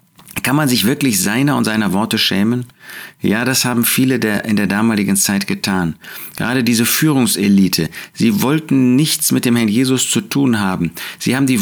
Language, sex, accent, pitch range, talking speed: German, male, German, 105-145 Hz, 180 wpm